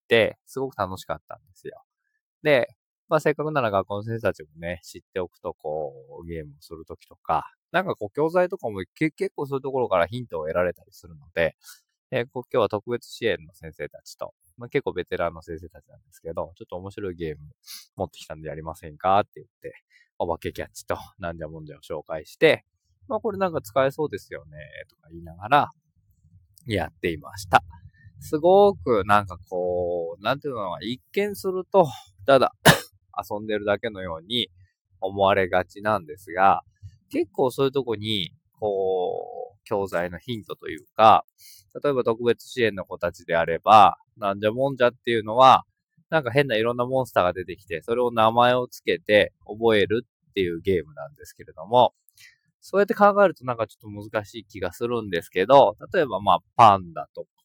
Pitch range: 90-140 Hz